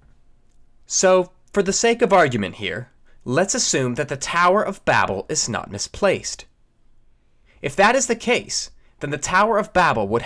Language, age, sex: English, 30-49, male